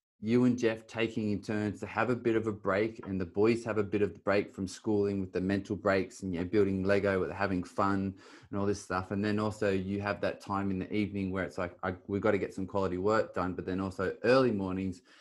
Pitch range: 100-120 Hz